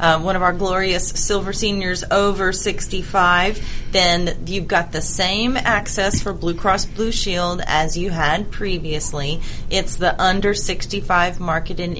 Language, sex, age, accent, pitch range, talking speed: English, female, 30-49, American, 165-200 Hz, 145 wpm